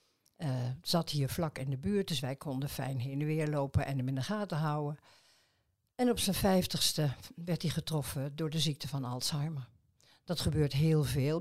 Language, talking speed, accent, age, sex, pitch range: Dutch, 195 wpm, Dutch, 50-69, female, 140-170 Hz